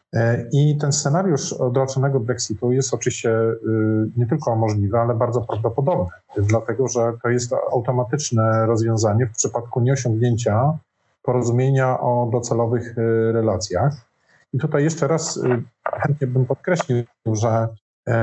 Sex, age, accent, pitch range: male, 40-59, native, 110-130 Hz